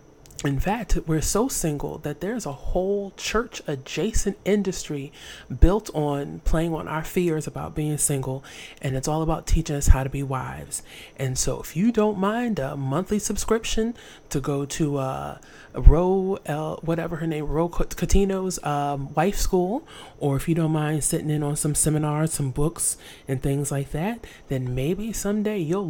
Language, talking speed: English, 170 wpm